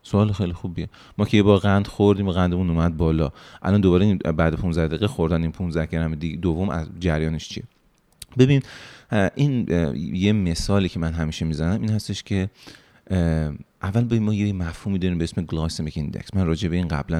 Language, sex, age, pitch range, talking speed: Persian, male, 30-49, 80-115 Hz, 180 wpm